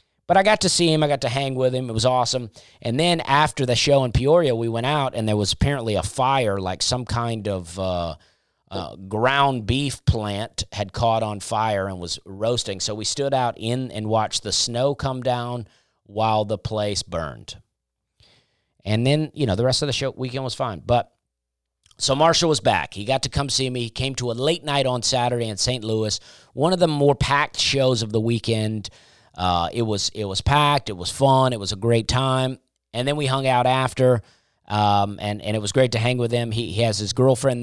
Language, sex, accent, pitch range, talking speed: English, male, American, 105-135 Hz, 225 wpm